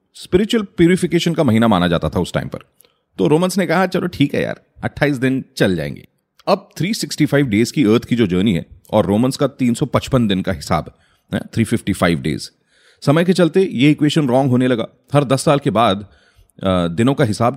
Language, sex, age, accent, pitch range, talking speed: Hindi, male, 30-49, native, 105-150 Hz, 195 wpm